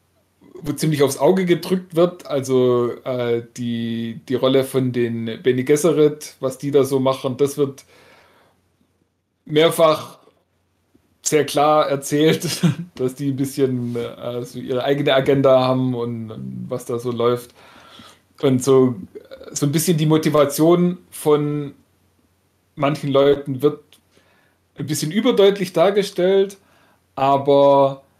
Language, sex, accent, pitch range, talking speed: German, male, German, 130-155 Hz, 120 wpm